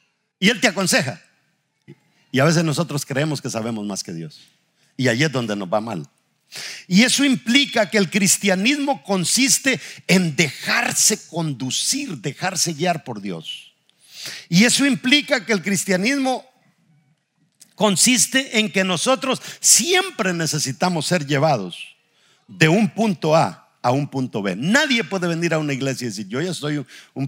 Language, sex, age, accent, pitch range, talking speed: English, male, 50-69, Mexican, 140-210 Hz, 150 wpm